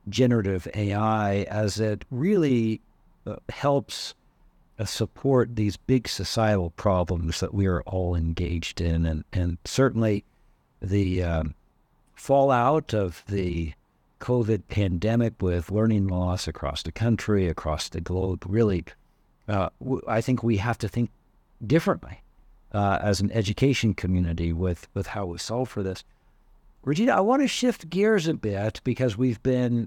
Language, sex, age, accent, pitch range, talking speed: English, male, 60-79, American, 95-125 Hz, 140 wpm